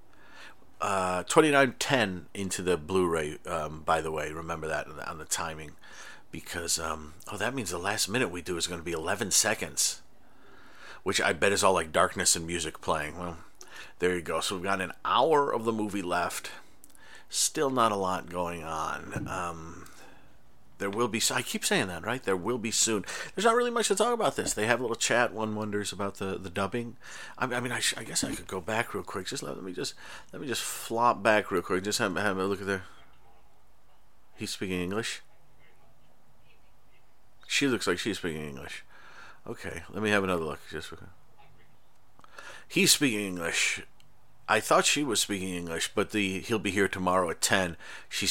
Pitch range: 85-110 Hz